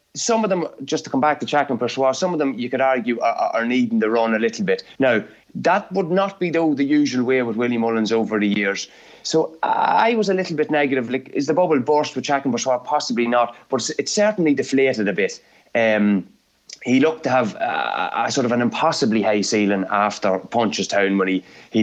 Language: English